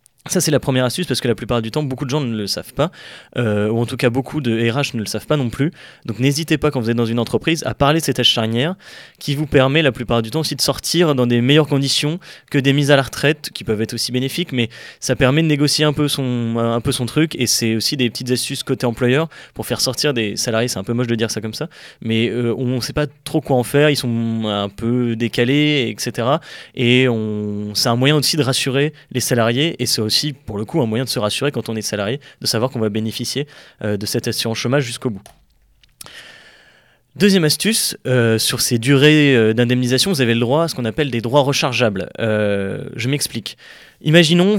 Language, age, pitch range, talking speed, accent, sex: French, 20-39, 115-145 Hz, 245 wpm, French, male